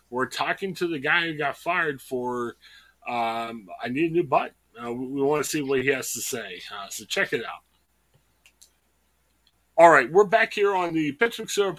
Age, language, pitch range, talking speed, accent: 30-49, English, 135-200 Hz, 200 wpm, American